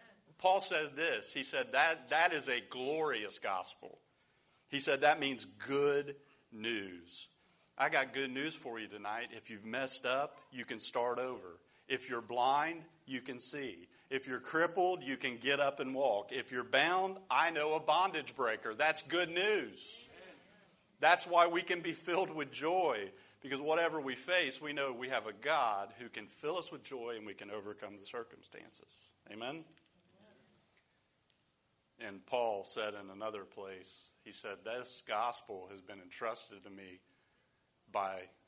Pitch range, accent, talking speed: 105-150 Hz, American, 165 wpm